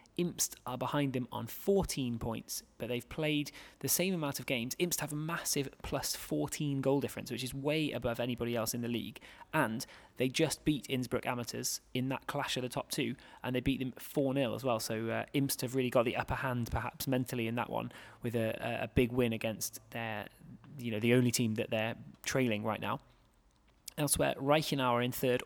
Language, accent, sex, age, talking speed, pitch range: English, British, male, 20-39, 205 wpm, 120-145 Hz